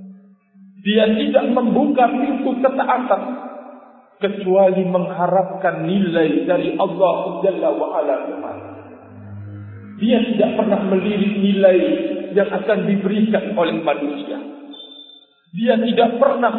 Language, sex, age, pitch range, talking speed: Indonesian, male, 50-69, 185-240 Hz, 90 wpm